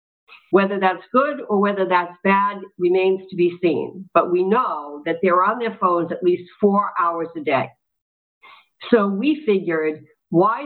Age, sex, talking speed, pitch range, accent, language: 50-69, female, 165 wpm, 180-230 Hz, American, English